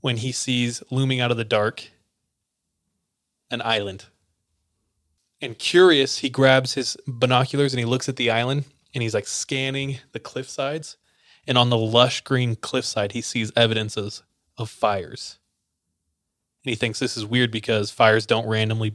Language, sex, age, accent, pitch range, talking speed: English, male, 20-39, American, 105-130 Hz, 160 wpm